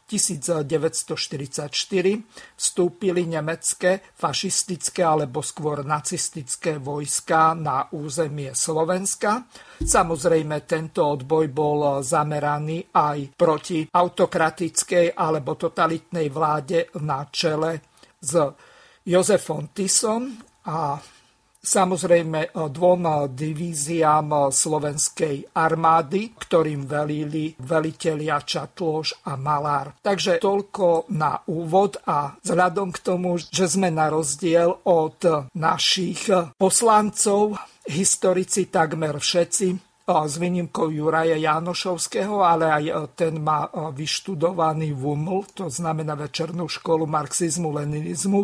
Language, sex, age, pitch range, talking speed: Slovak, male, 50-69, 155-180 Hz, 90 wpm